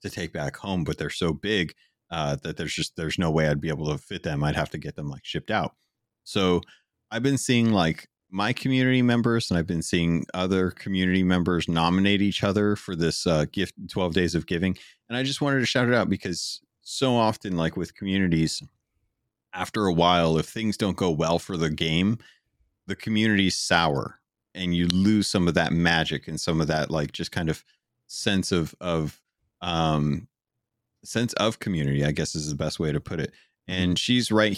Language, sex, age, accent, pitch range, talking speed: English, male, 30-49, American, 80-100 Hz, 205 wpm